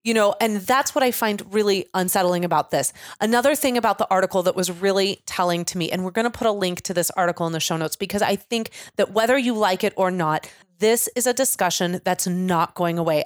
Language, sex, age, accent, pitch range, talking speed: English, female, 30-49, American, 170-210 Hz, 245 wpm